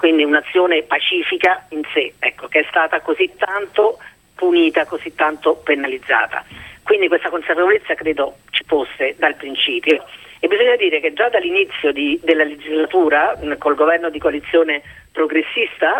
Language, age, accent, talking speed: Italian, 40-59, native, 140 wpm